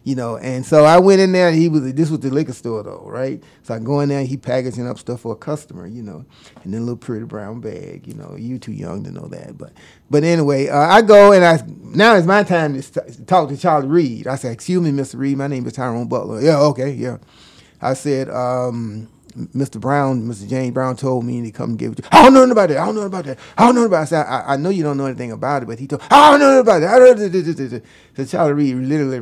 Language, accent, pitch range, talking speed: English, American, 120-150 Hz, 270 wpm